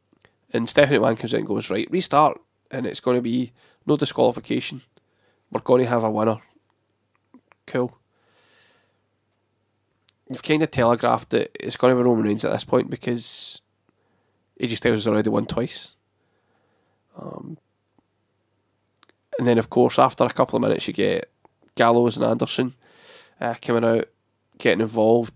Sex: male